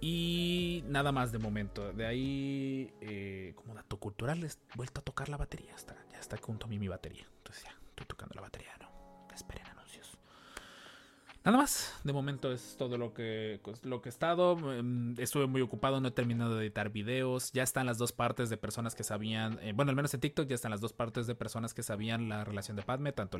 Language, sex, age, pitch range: Spanish, male, 30-49, 105-135 Hz